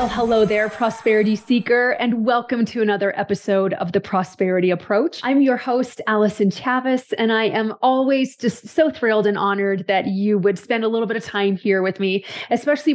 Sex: female